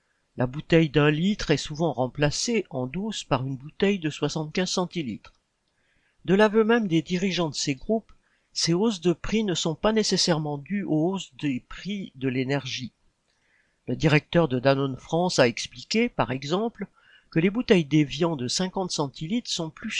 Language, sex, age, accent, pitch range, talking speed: French, male, 50-69, French, 150-200 Hz, 170 wpm